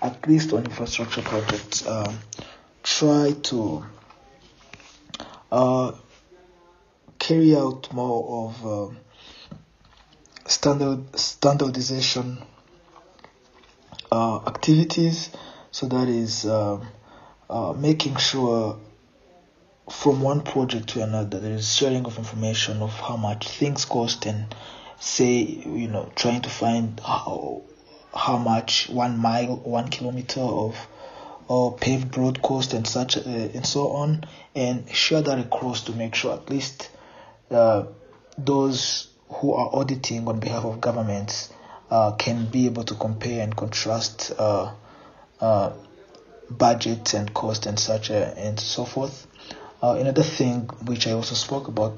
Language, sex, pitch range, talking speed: English, male, 110-130 Hz, 125 wpm